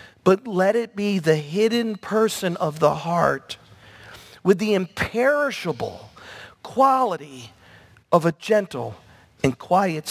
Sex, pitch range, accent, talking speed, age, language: male, 115-195 Hz, American, 115 wpm, 50-69, English